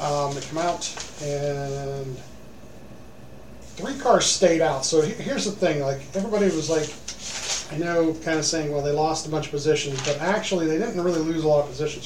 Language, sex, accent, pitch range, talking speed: English, male, American, 140-165 Hz, 195 wpm